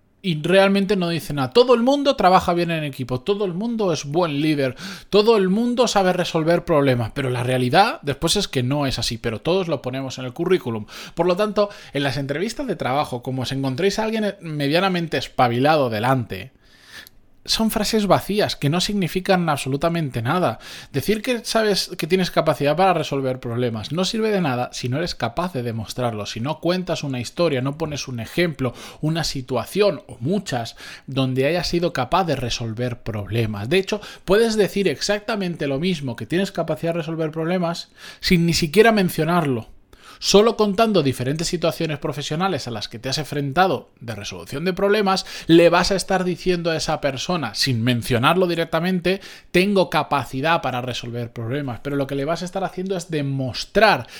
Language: Spanish